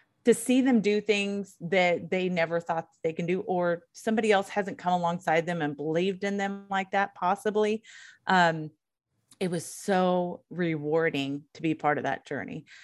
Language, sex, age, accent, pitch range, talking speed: English, female, 30-49, American, 160-195 Hz, 175 wpm